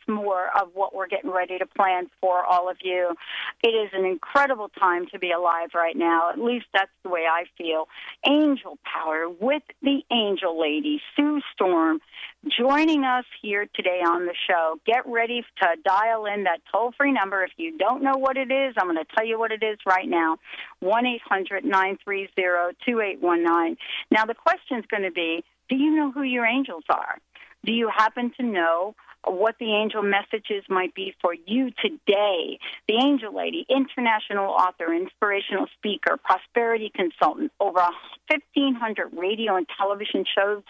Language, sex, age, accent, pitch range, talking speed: English, female, 50-69, American, 180-250 Hz, 165 wpm